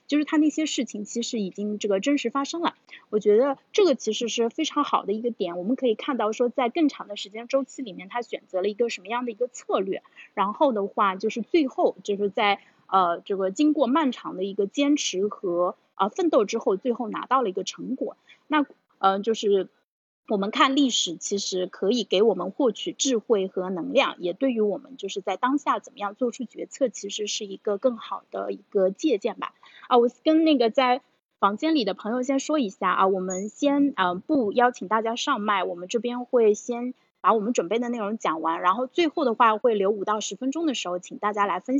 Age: 30-49